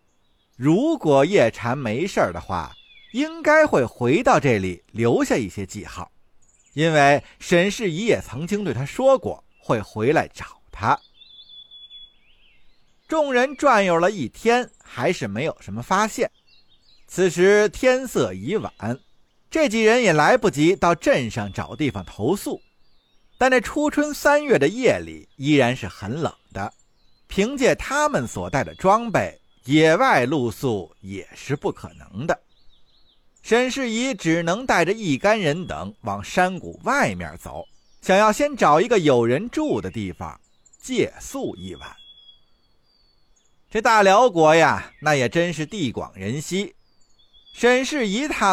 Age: 50-69